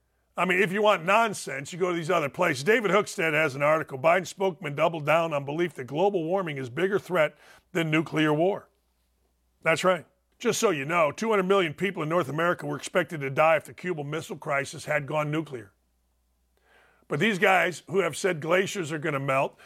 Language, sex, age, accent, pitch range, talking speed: English, male, 50-69, American, 150-190 Hz, 205 wpm